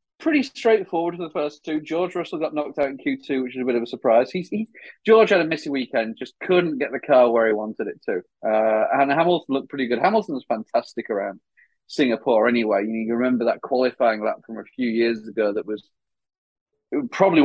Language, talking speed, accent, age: English, 205 wpm, British, 30-49